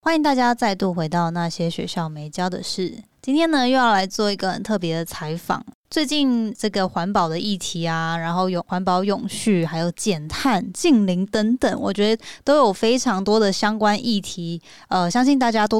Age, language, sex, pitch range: 20-39, Chinese, female, 190-245 Hz